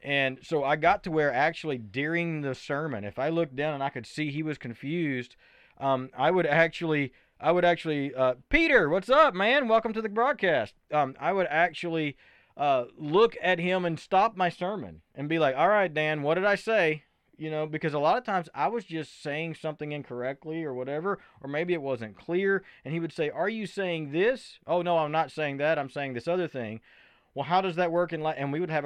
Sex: male